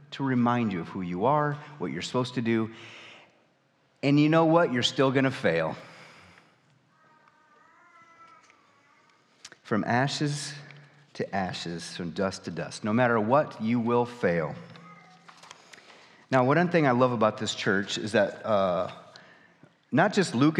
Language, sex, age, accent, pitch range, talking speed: English, male, 30-49, American, 105-155 Hz, 145 wpm